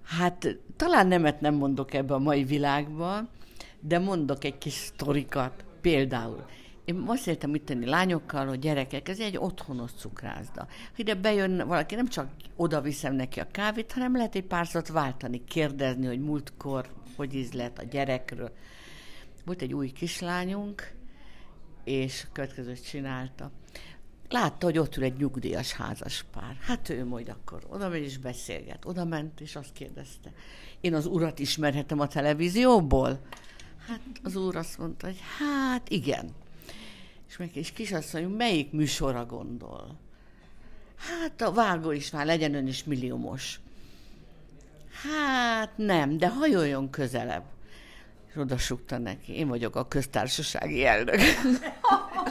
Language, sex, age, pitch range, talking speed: Hungarian, female, 60-79, 135-185 Hz, 135 wpm